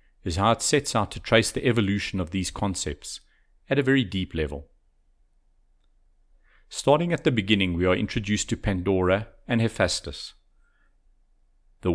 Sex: male